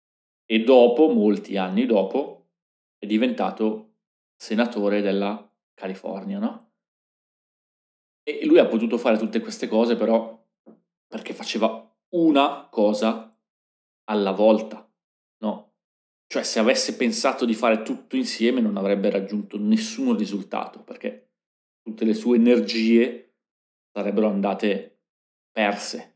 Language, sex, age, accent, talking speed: Italian, male, 30-49, native, 110 wpm